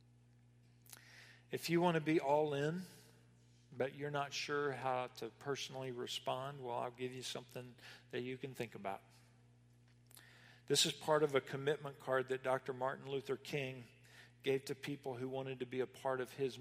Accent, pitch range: American, 120-145 Hz